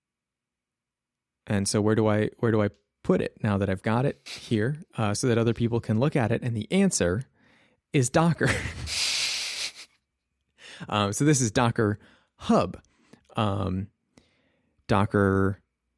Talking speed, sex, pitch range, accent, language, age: 145 wpm, male, 100-130 Hz, American, English, 30-49